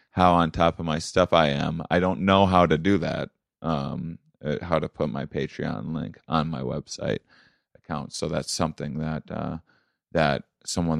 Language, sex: English, male